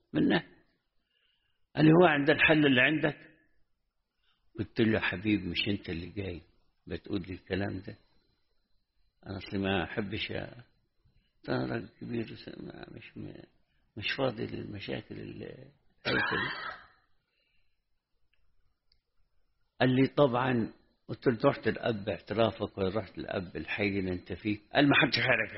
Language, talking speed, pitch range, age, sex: English, 115 wpm, 95-125 Hz, 60-79, male